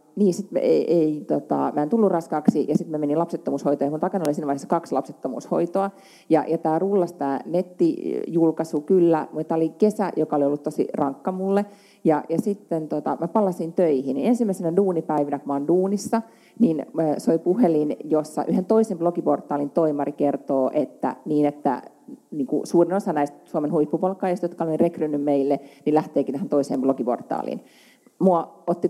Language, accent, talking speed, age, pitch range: Finnish, native, 165 wpm, 30-49, 150-200 Hz